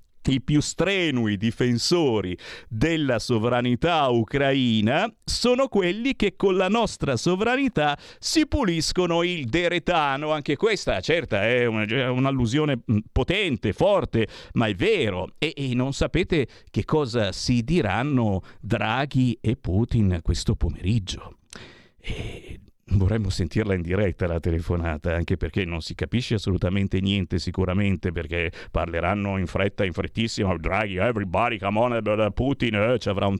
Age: 50-69